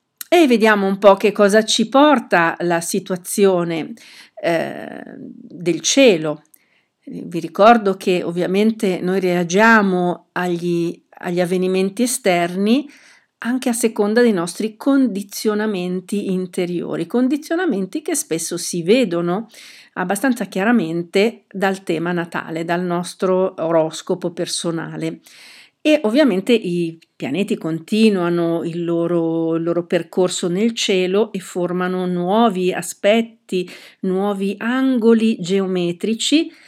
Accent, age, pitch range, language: native, 50-69, 175-220 Hz, Italian